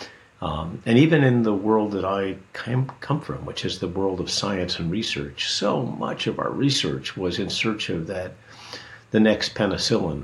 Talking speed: 180 wpm